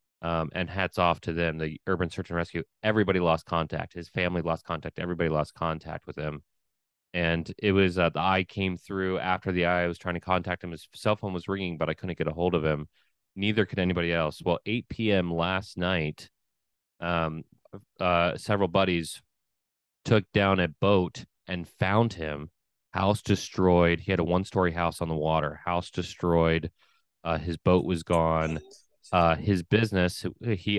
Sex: male